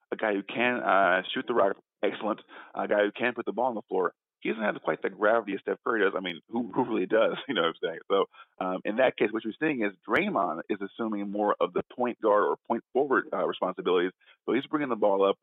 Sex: male